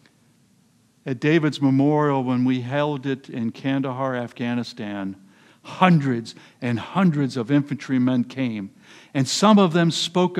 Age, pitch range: 60-79, 135-210 Hz